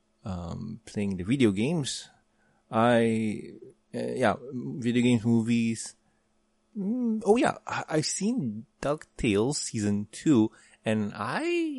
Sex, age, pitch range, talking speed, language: male, 20-39, 110-130 Hz, 110 wpm, English